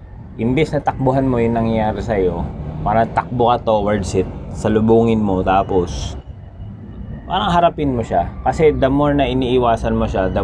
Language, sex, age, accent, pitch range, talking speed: Filipino, male, 20-39, native, 95-115 Hz, 160 wpm